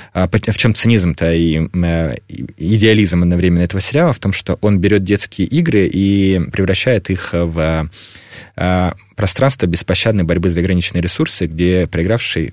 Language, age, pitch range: Russian, 20-39, 85-100 Hz